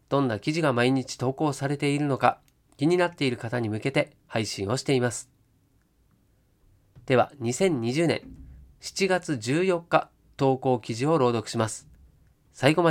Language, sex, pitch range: Japanese, male, 105-155 Hz